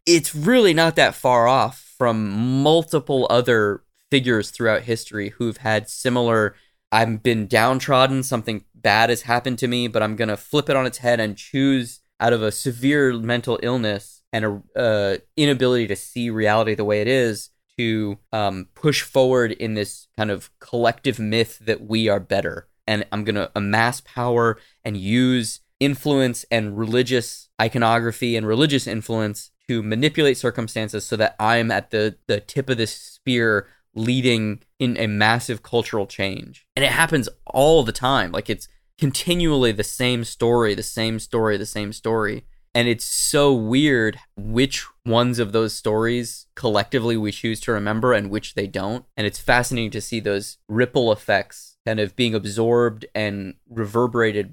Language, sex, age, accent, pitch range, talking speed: English, male, 20-39, American, 110-125 Hz, 165 wpm